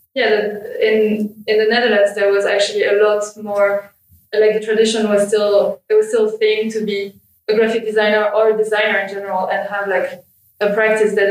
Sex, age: female, 20-39